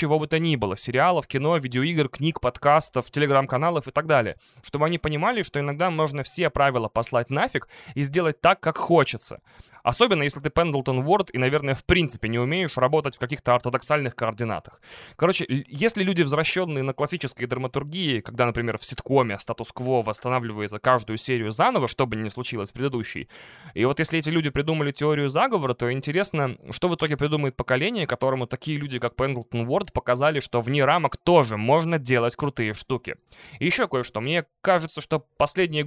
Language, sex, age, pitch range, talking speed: Russian, male, 20-39, 125-155 Hz, 170 wpm